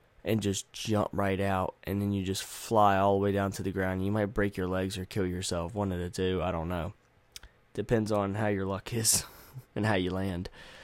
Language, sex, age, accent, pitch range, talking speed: English, male, 10-29, American, 95-105 Hz, 235 wpm